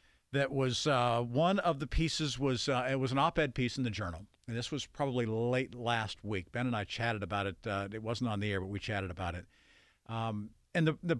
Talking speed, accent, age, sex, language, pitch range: 240 wpm, American, 50-69, male, English, 120-160 Hz